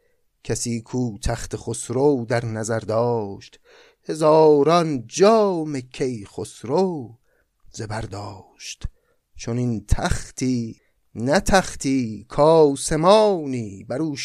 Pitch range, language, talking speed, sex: 110-145 Hz, Persian, 85 wpm, male